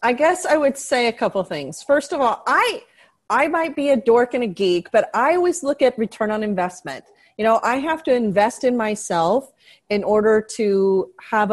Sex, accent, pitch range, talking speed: female, American, 185-230 Hz, 210 wpm